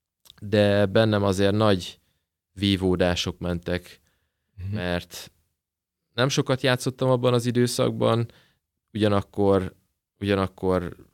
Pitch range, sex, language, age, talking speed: 95-125 Hz, male, Hungarian, 20-39, 80 wpm